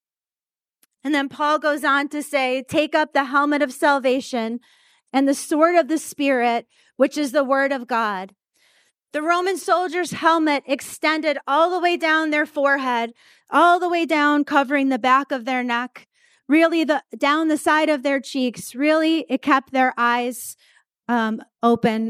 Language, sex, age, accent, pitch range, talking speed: English, female, 30-49, American, 265-325 Hz, 165 wpm